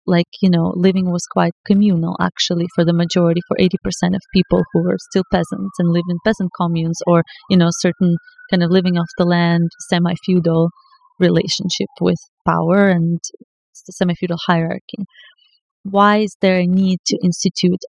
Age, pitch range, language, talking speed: 30-49, 170-195 Hz, English, 160 wpm